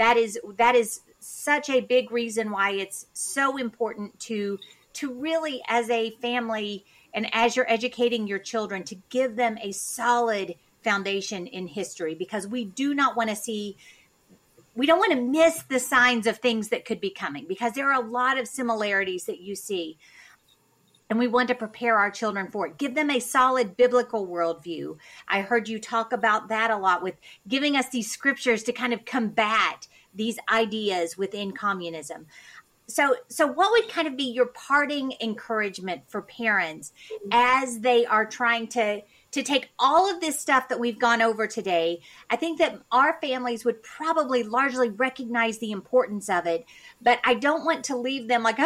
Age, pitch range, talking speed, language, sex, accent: 40-59, 210-255 Hz, 180 wpm, English, female, American